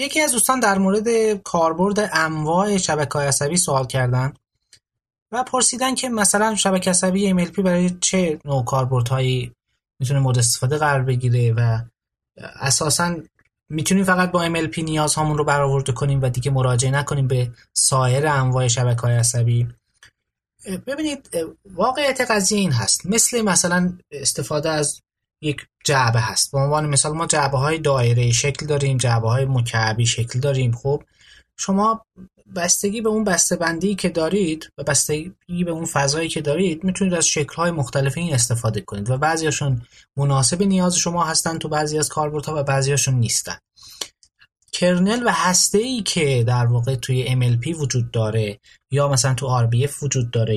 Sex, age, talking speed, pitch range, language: male, 20-39, 150 wpm, 130-180 Hz, Persian